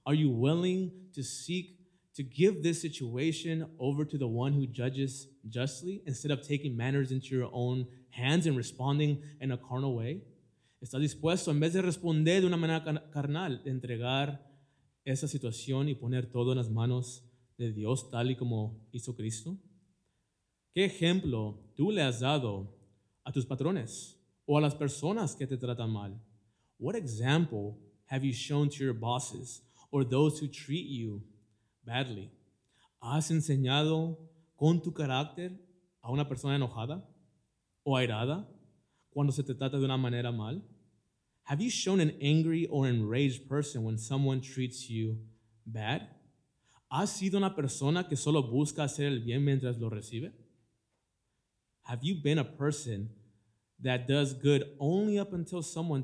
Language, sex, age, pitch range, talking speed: Spanish, male, 20-39, 120-155 Hz, 155 wpm